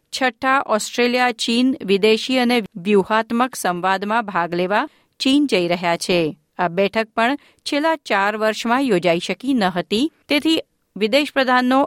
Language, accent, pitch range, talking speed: Gujarati, native, 190-250 Hz, 130 wpm